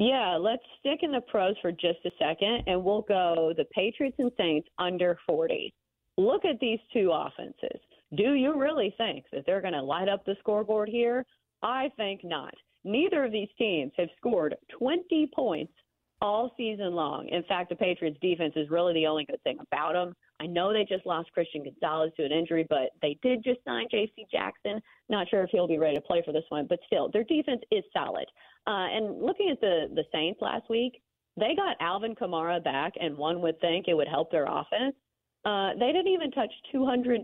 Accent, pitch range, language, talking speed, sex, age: American, 170-245 Hz, English, 205 wpm, female, 40-59